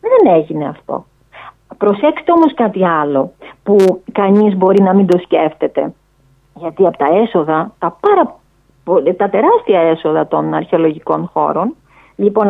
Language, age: Greek, 30-49